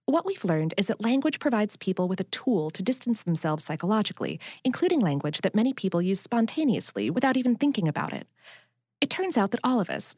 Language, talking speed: English, 200 wpm